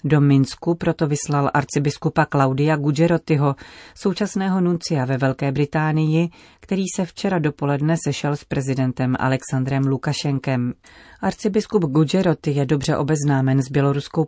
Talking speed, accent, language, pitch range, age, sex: 120 wpm, native, Czech, 135-160 Hz, 30-49, female